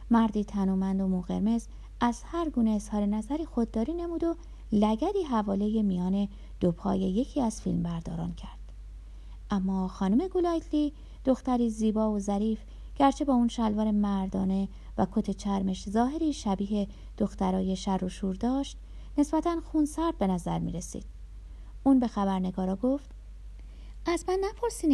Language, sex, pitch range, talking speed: Persian, female, 190-285 Hz, 130 wpm